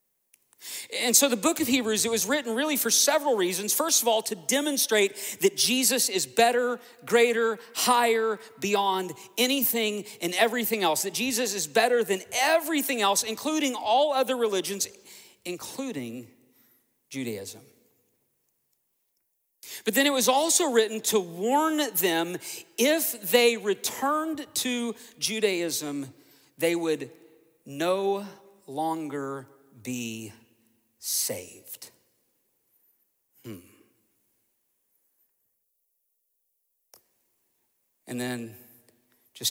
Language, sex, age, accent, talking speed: English, male, 40-59, American, 100 wpm